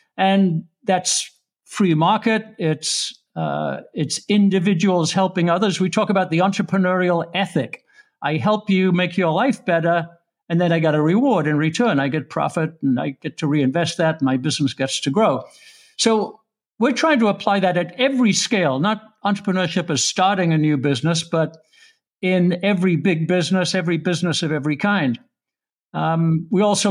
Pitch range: 160-200 Hz